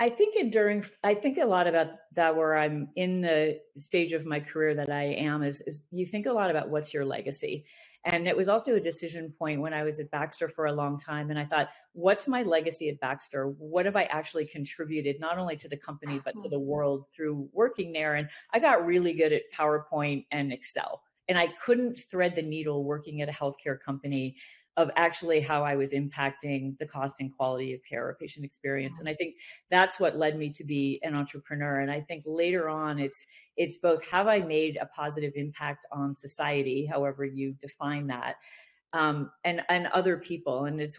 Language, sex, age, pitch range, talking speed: English, female, 40-59, 140-165 Hz, 210 wpm